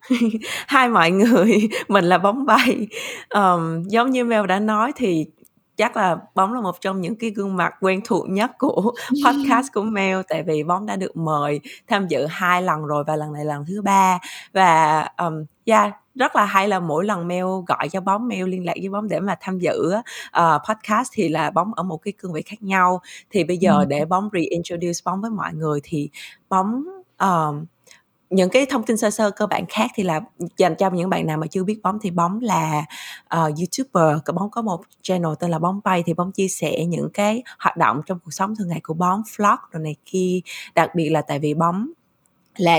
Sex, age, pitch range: female, 20-39, 165-210 Hz